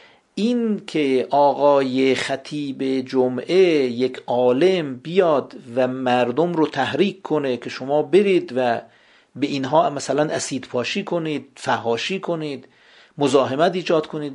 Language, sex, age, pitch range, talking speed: Persian, male, 50-69, 125-165 Hz, 115 wpm